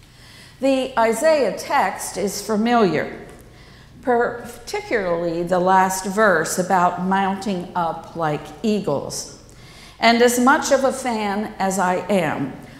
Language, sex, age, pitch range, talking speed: English, female, 50-69, 170-235 Hz, 110 wpm